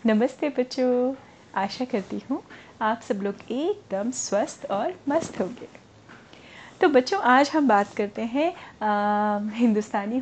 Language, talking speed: Hindi, 130 wpm